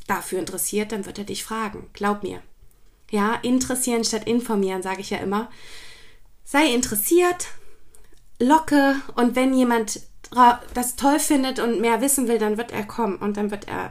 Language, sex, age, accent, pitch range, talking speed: German, female, 20-39, German, 180-235 Hz, 165 wpm